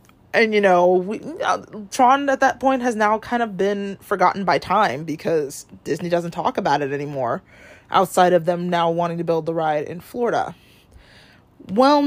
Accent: American